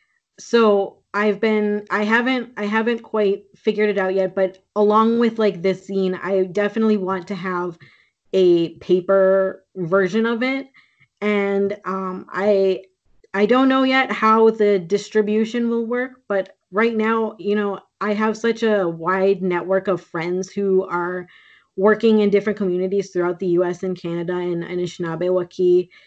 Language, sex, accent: English, female, American